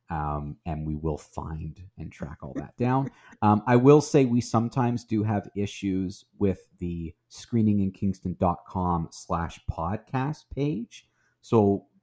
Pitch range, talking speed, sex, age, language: 85-115 Hz, 135 wpm, male, 30-49, English